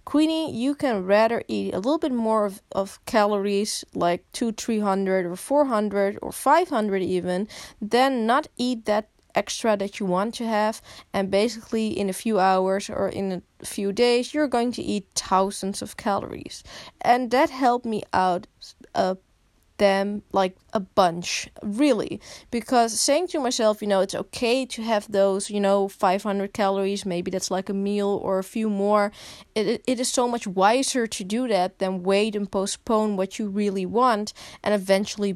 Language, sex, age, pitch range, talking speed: English, female, 20-39, 190-230 Hz, 180 wpm